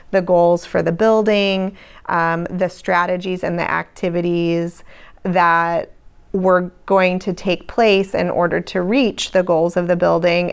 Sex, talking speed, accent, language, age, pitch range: female, 150 wpm, American, English, 30-49, 175-200 Hz